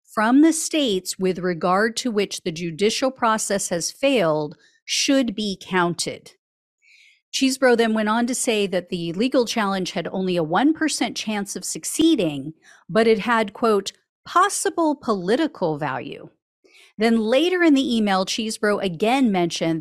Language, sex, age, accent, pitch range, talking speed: English, female, 40-59, American, 185-265 Hz, 140 wpm